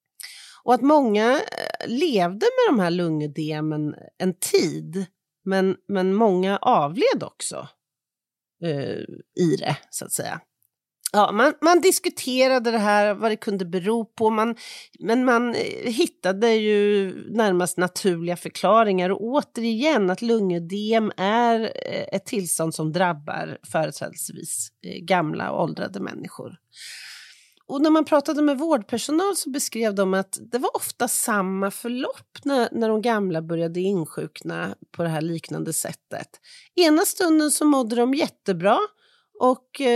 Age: 40-59